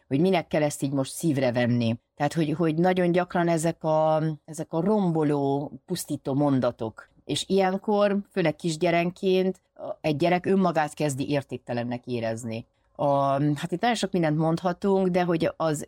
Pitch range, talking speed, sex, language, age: 130-170 Hz, 150 wpm, female, Hungarian, 30-49